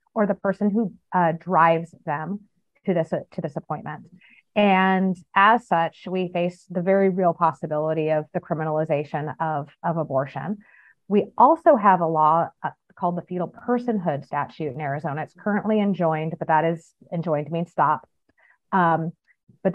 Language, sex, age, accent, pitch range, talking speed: English, female, 30-49, American, 155-185 Hz, 155 wpm